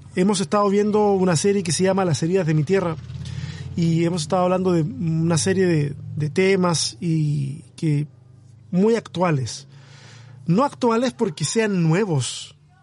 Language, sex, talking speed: Spanish, male, 150 wpm